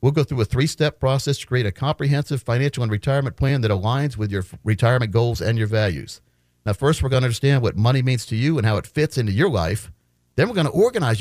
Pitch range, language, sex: 105-145 Hz, English, male